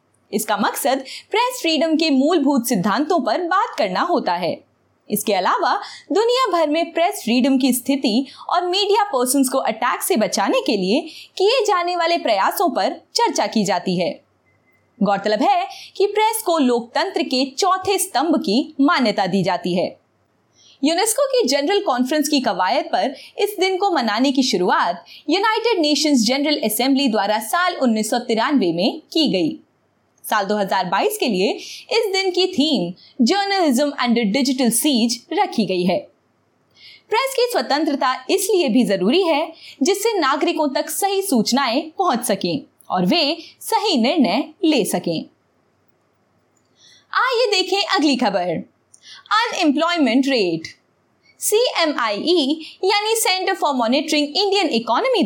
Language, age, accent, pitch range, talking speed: Hindi, 20-39, native, 245-375 Hz, 135 wpm